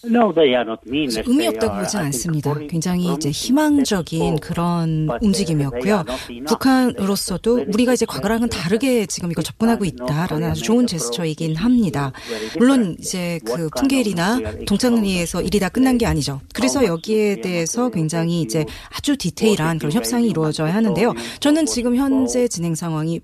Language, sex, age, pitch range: Korean, female, 30-49, 160-245 Hz